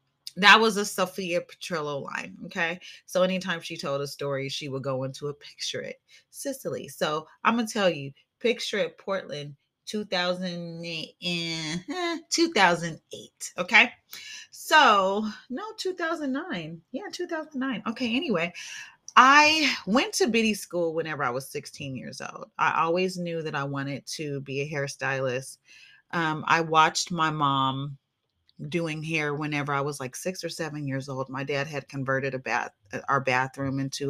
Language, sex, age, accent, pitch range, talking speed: English, female, 30-49, American, 140-190 Hz, 150 wpm